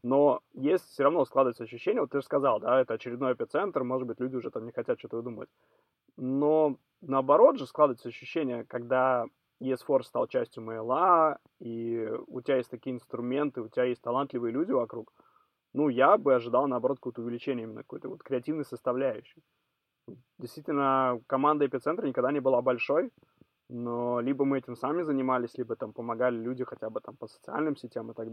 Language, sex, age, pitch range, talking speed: Russian, male, 20-39, 120-140 Hz, 175 wpm